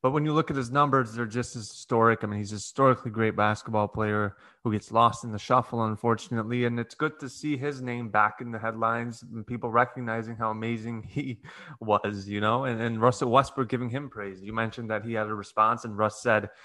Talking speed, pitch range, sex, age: 225 wpm, 110-125 Hz, male, 20-39